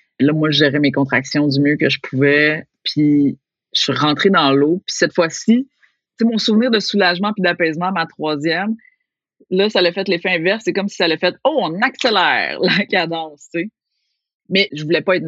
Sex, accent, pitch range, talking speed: female, Canadian, 155-205 Hz, 210 wpm